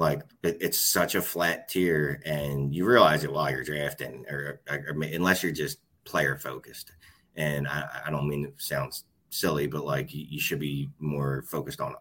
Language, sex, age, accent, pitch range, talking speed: English, male, 30-49, American, 70-80 Hz, 180 wpm